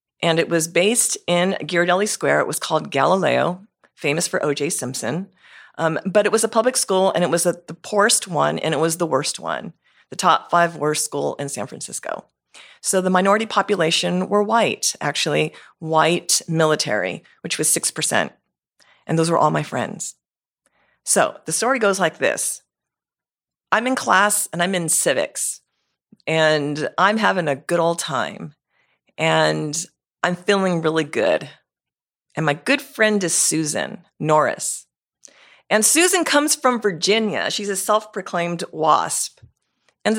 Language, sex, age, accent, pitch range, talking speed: English, female, 40-59, American, 165-210 Hz, 155 wpm